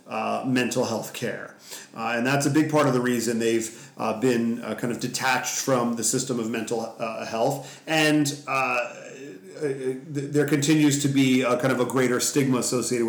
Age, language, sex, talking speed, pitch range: 40-59, English, male, 185 wpm, 120-145 Hz